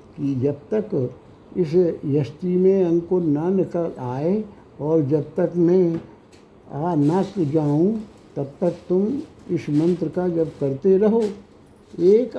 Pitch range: 155-190 Hz